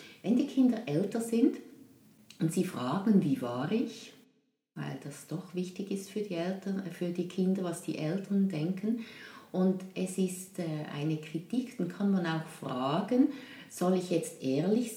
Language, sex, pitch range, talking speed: German, female, 155-210 Hz, 150 wpm